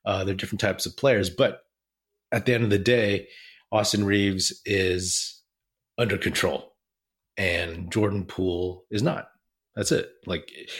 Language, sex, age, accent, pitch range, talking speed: English, male, 30-49, American, 90-105 Hz, 145 wpm